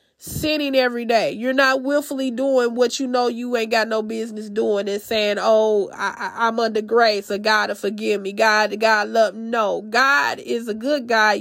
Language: English